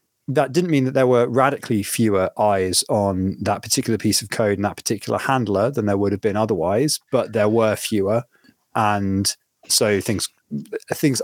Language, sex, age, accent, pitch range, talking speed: English, male, 20-39, British, 100-120 Hz, 175 wpm